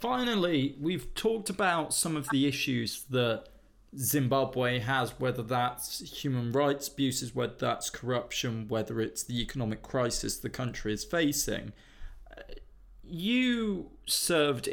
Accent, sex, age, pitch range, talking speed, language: British, male, 20-39, 120-150 Hz, 120 wpm, English